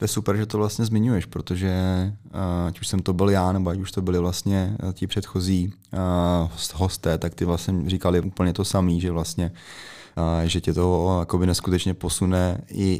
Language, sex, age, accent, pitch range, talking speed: Czech, male, 20-39, native, 85-95 Hz, 175 wpm